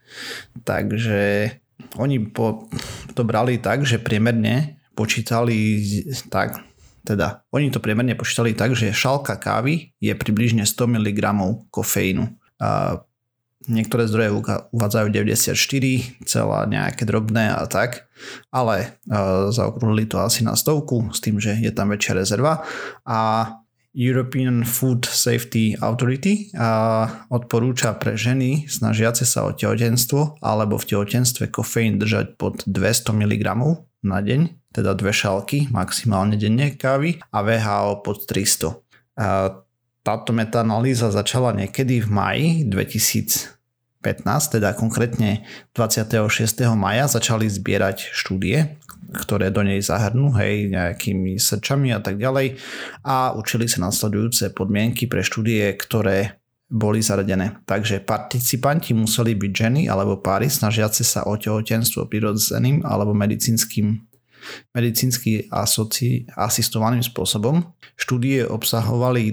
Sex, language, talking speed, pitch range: male, Slovak, 120 wpm, 105-125 Hz